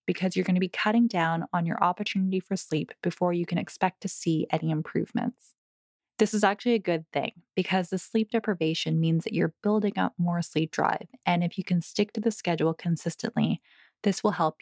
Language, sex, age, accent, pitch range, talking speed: English, female, 20-39, American, 165-195 Hz, 200 wpm